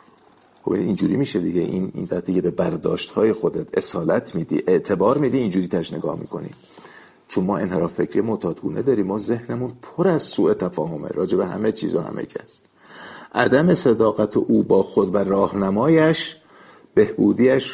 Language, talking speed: Persian, 160 wpm